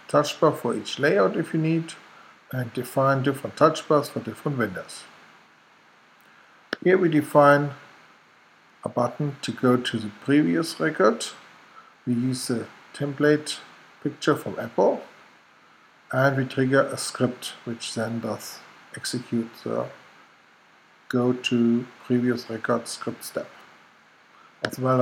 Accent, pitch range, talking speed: German, 120-145 Hz, 125 wpm